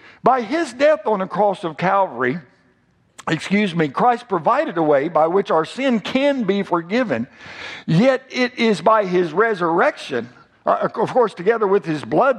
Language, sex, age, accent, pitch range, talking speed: English, male, 60-79, American, 160-240 Hz, 160 wpm